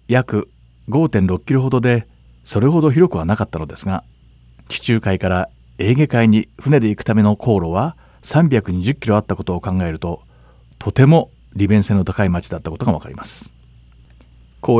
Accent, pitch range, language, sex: native, 90-125 Hz, Japanese, male